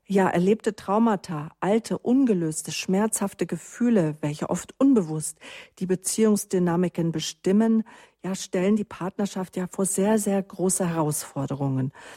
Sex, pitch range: female, 175-215 Hz